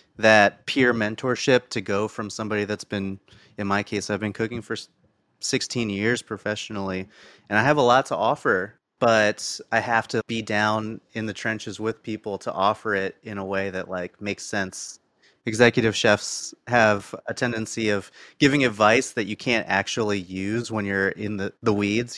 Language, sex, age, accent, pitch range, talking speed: English, male, 30-49, American, 100-115 Hz, 180 wpm